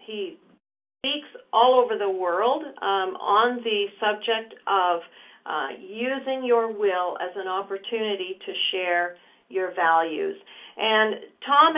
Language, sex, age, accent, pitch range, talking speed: English, female, 50-69, American, 195-265 Hz, 120 wpm